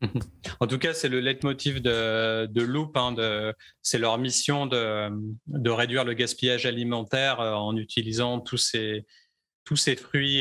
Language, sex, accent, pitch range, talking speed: French, male, French, 110-130 Hz, 150 wpm